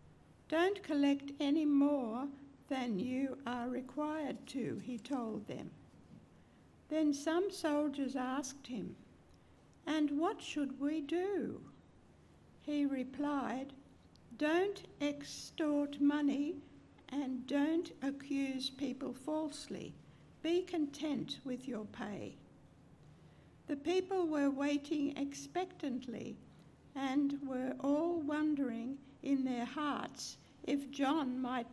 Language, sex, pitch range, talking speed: English, female, 255-305 Hz, 100 wpm